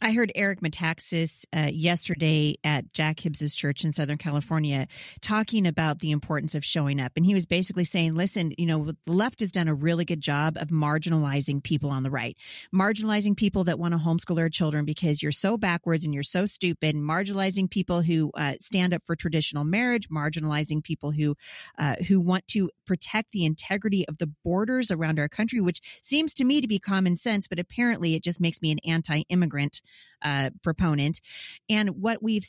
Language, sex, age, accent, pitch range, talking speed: English, female, 30-49, American, 155-195 Hz, 190 wpm